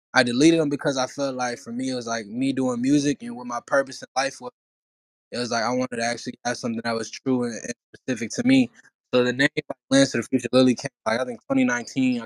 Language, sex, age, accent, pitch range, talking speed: English, male, 10-29, American, 120-150 Hz, 260 wpm